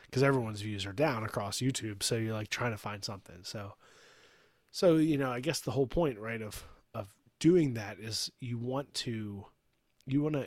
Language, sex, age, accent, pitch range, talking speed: English, male, 30-49, American, 105-135 Hz, 200 wpm